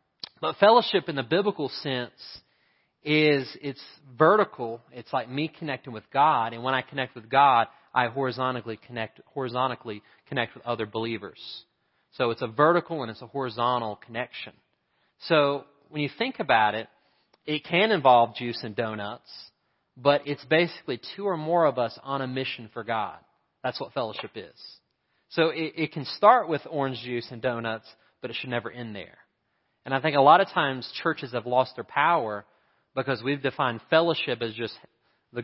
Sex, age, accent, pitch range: male, 30-49, American, 115-140 Hz